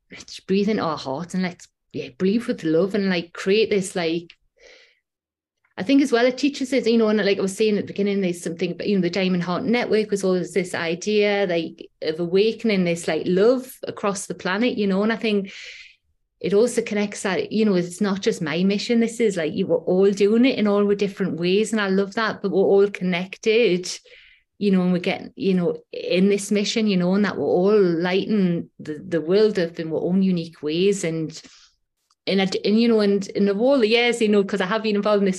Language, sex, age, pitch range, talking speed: English, female, 30-49, 185-220 Hz, 235 wpm